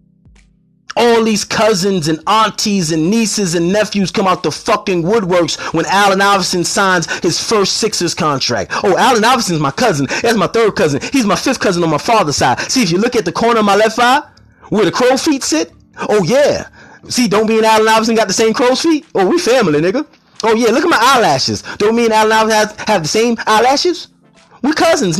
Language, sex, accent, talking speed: English, male, American, 210 wpm